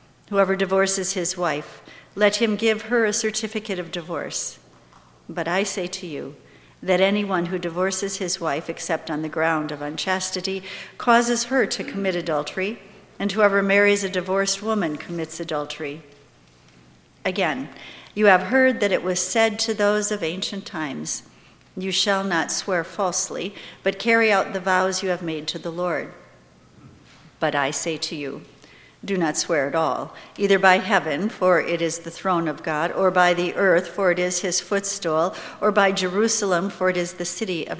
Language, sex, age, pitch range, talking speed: English, female, 60-79, 160-195 Hz, 175 wpm